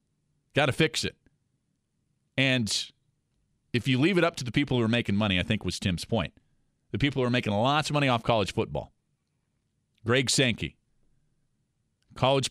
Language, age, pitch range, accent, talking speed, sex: English, 40-59, 105-135 Hz, American, 175 wpm, male